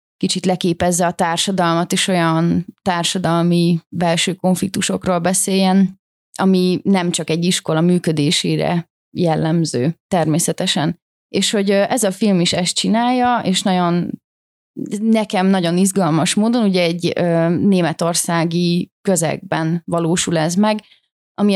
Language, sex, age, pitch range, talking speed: Hungarian, female, 30-49, 170-195 Hz, 110 wpm